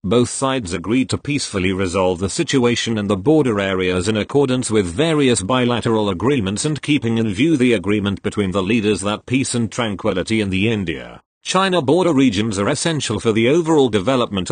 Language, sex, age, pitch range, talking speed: English, male, 40-59, 100-130 Hz, 175 wpm